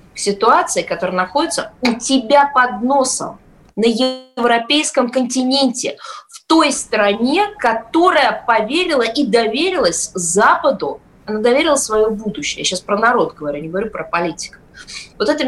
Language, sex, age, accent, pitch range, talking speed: Russian, female, 20-39, native, 195-265 Hz, 130 wpm